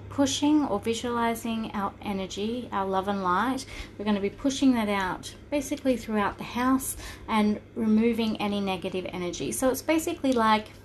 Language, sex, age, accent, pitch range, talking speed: English, female, 30-49, Australian, 185-225 Hz, 160 wpm